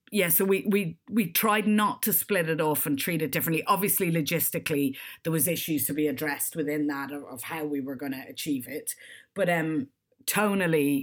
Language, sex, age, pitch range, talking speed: English, female, 30-49, 150-190 Hz, 195 wpm